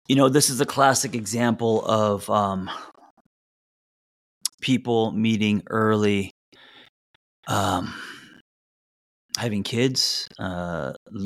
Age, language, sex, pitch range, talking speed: 30-49, English, male, 100-115 Hz, 85 wpm